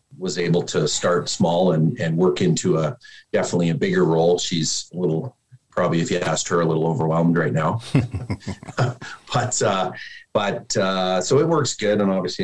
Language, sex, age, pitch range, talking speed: English, male, 40-59, 80-95 Hz, 180 wpm